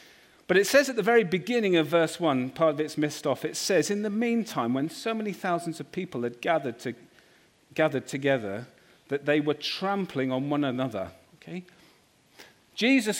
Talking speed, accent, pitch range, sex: 180 wpm, British, 180-260 Hz, male